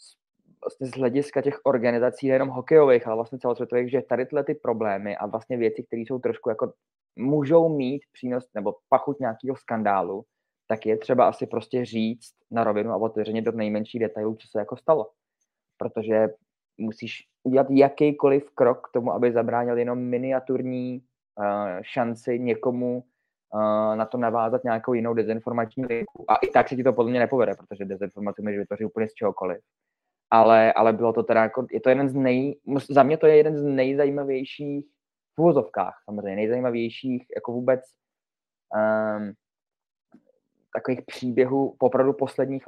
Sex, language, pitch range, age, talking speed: male, Czech, 110-130 Hz, 20-39, 150 wpm